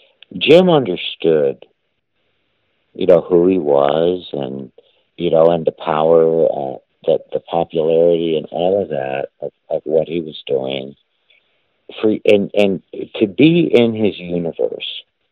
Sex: male